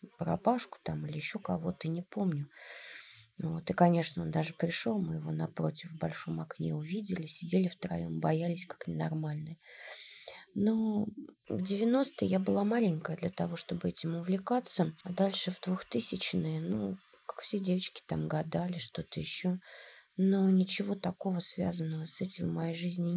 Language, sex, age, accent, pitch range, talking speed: Russian, female, 30-49, native, 155-185 Hz, 150 wpm